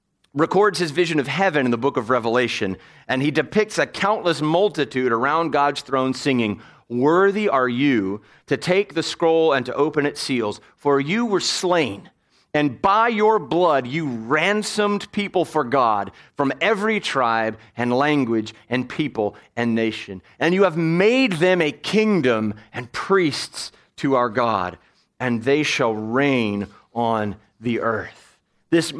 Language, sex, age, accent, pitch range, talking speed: English, male, 40-59, American, 120-180 Hz, 155 wpm